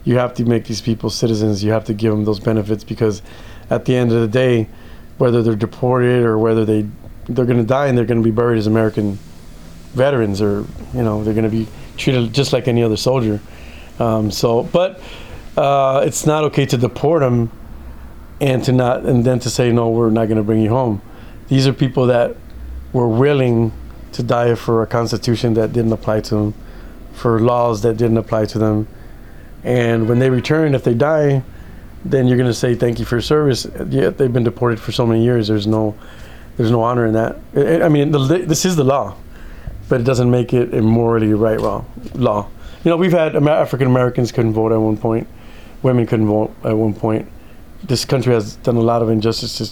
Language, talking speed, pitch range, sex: English, 210 wpm, 110-125 Hz, male